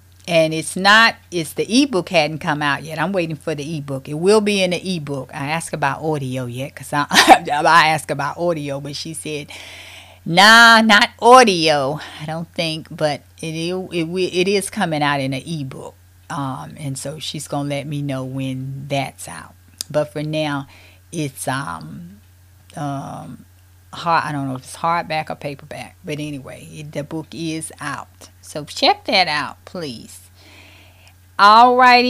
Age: 30-49